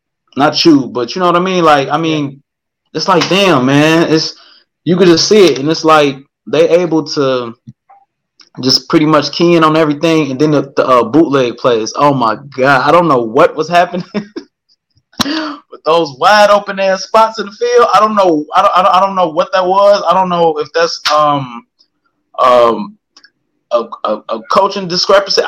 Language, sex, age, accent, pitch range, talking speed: English, male, 20-39, American, 135-175 Hz, 195 wpm